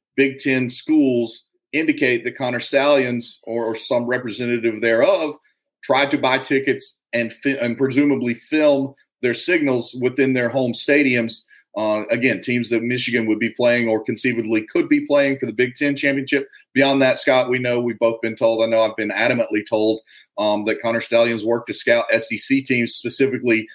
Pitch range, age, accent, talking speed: 115-135 Hz, 40-59, American, 175 wpm